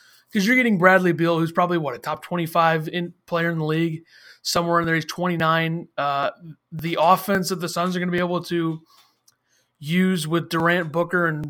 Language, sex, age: English, male, 30-49